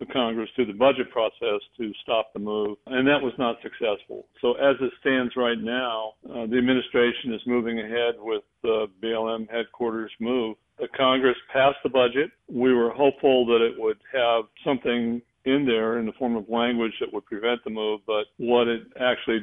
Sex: male